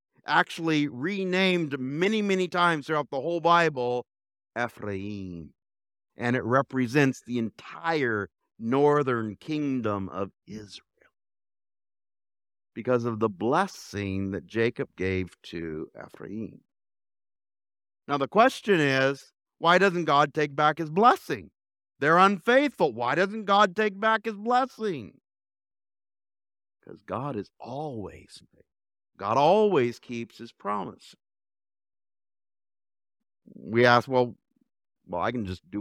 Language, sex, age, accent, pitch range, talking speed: English, male, 50-69, American, 100-145 Hz, 110 wpm